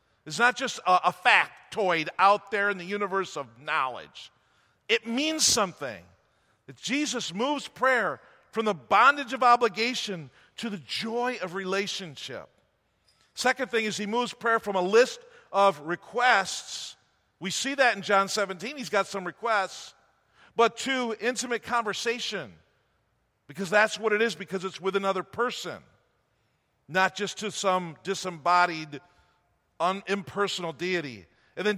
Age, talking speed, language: 50-69, 145 wpm, English